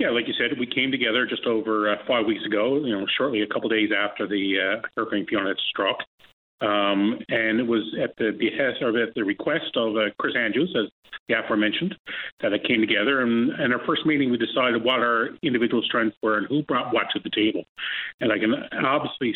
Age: 40-59